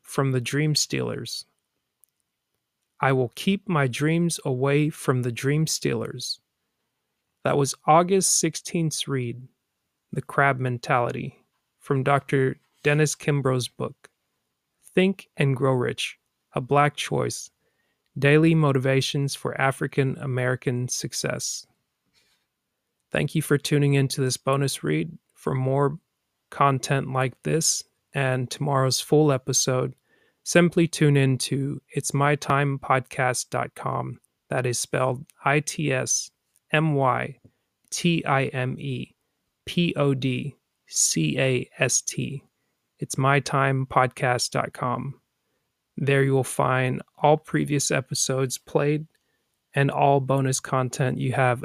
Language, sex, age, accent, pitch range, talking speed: English, male, 30-49, American, 130-145 Hz, 95 wpm